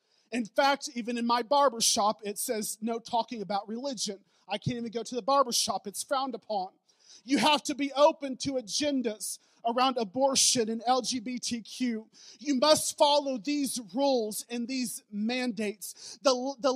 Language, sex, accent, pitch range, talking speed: English, male, American, 220-275 Hz, 160 wpm